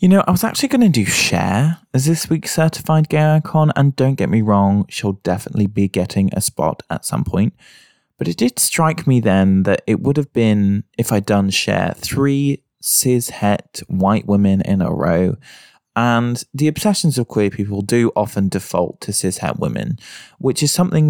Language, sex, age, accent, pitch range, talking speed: English, male, 20-39, British, 100-135 Hz, 195 wpm